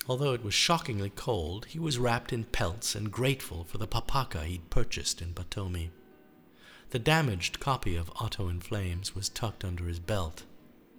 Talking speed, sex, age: 170 wpm, male, 50-69